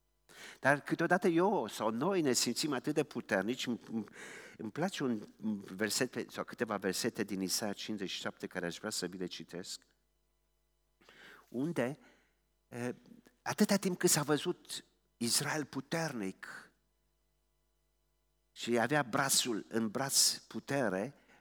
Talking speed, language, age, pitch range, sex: 115 wpm, Romanian, 50-69, 105-160 Hz, male